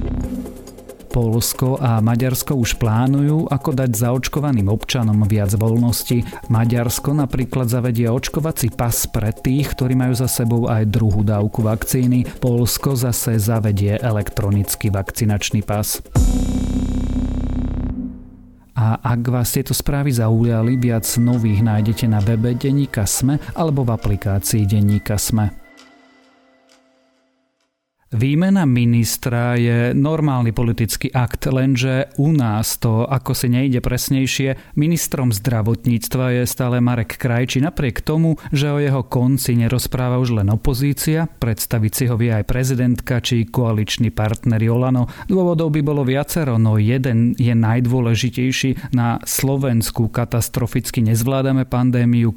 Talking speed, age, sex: 120 wpm, 40-59, male